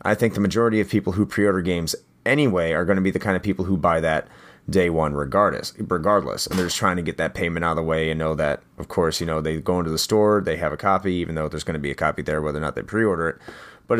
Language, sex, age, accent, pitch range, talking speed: English, male, 30-49, American, 80-100 Hz, 295 wpm